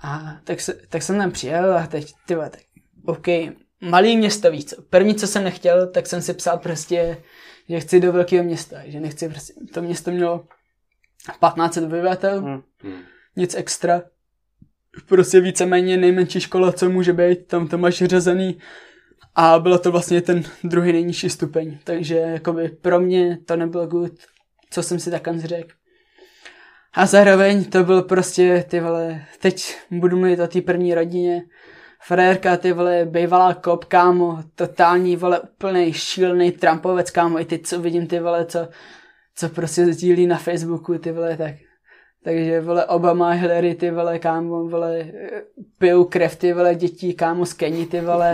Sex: male